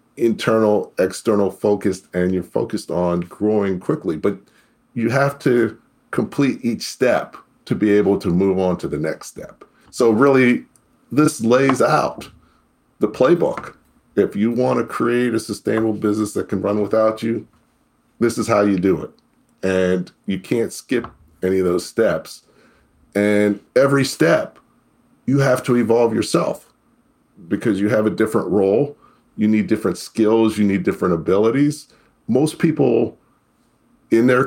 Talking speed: 150 wpm